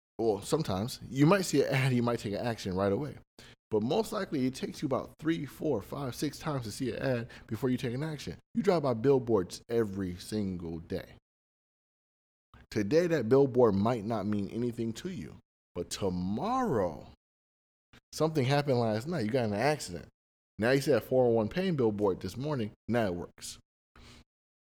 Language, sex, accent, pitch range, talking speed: English, male, American, 95-140 Hz, 180 wpm